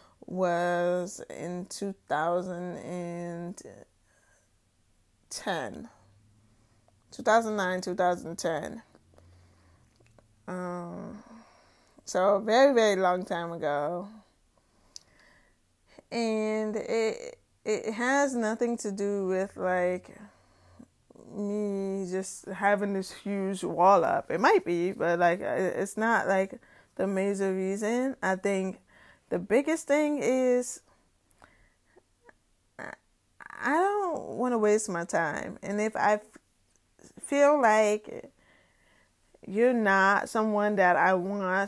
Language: English